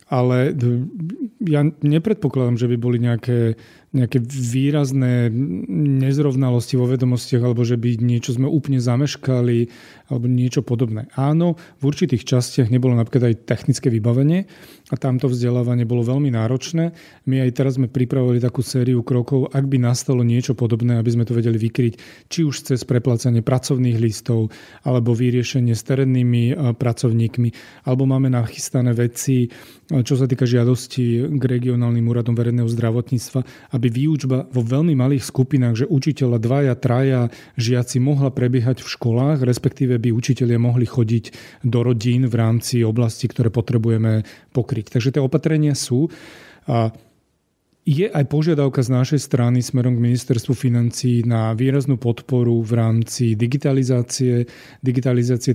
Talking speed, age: 140 wpm, 30-49